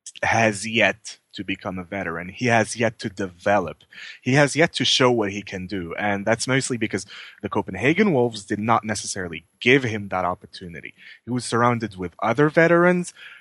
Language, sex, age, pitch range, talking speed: English, male, 20-39, 100-135 Hz, 180 wpm